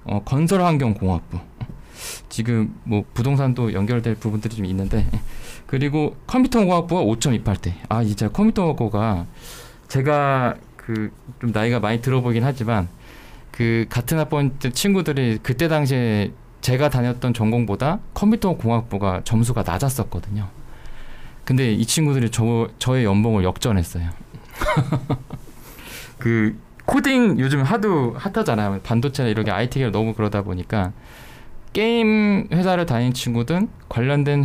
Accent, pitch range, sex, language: native, 110-145 Hz, male, Korean